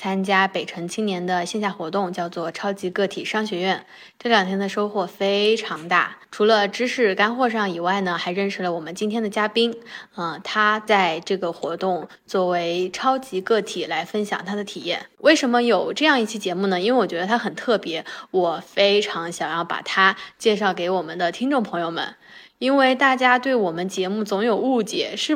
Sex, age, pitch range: female, 20-39, 180-230 Hz